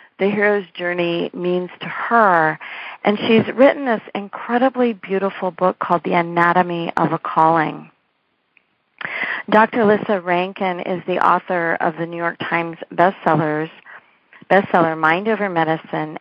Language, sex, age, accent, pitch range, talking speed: English, female, 40-59, American, 165-200 Hz, 130 wpm